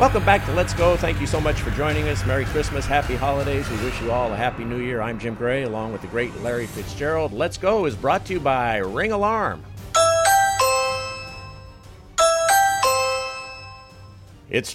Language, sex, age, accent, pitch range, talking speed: English, male, 50-69, American, 100-155 Hz, 175 wpm